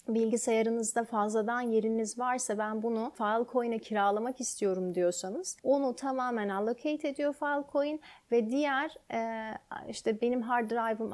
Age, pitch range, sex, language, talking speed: 30-49, 215-270 Hz, female, Turkish, 115 wpm